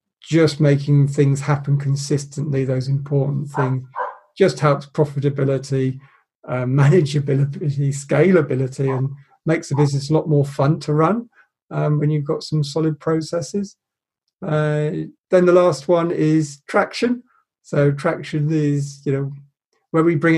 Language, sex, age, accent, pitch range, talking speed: English, male, 40-59, British, 140-160 Hz, 135 wpm